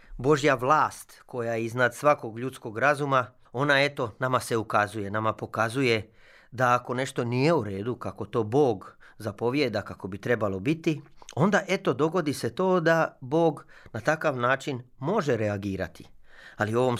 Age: 30-49